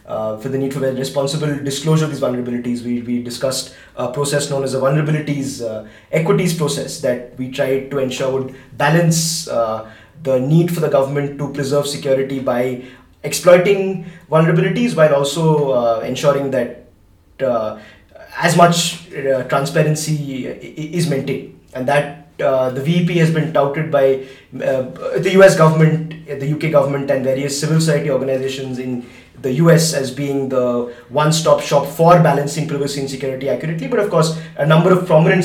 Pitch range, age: 135-165 Hz, 20-39